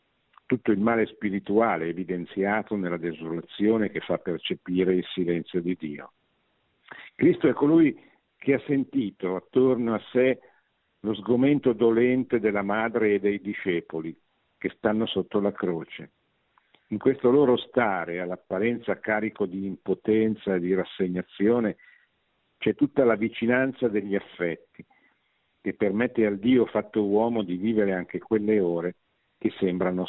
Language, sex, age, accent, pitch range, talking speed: Italian, male, 50-69, native, 95-120 Hz, 130 wpm